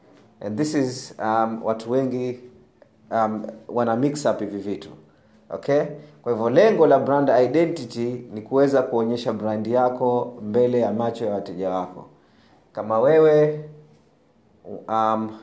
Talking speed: 125 wpm